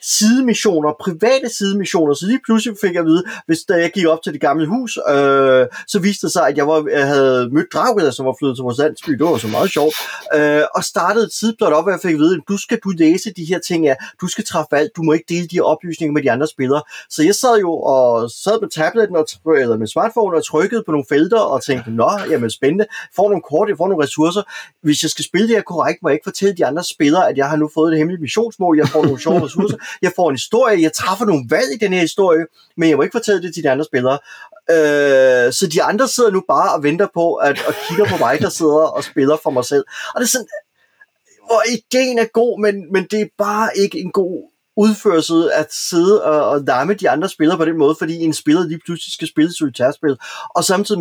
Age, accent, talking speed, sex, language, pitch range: 30-49, native, 255 wpm, male, Danish, 150-200 Hz